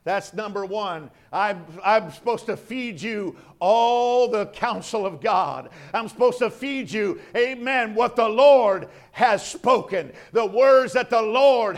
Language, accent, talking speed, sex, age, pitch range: English, American, 155 wpm, male, 50-69, 215-260 Hz